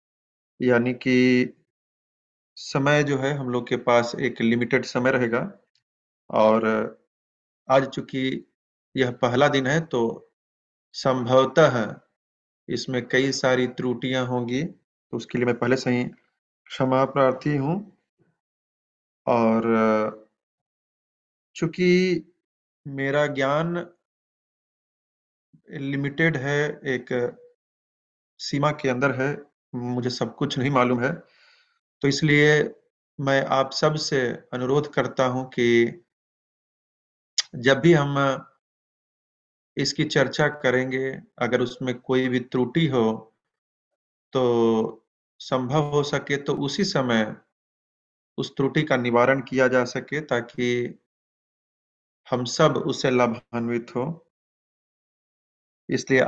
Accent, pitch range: native, 120-145 Hz